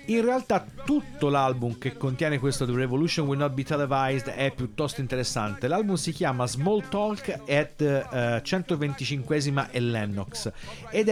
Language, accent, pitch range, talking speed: Italian, native, 115-145 Hz, 135 wpm